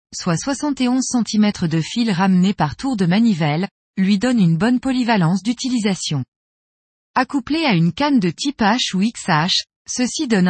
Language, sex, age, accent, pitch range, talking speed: French, female, 20-39, French, 175-250 Hz, 155 wpm